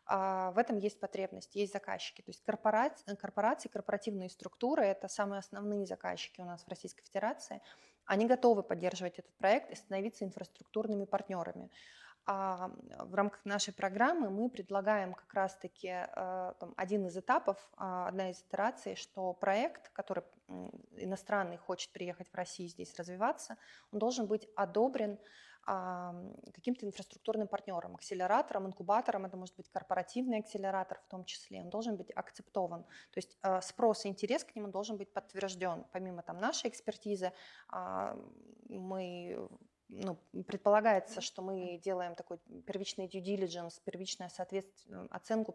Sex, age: female, 20-39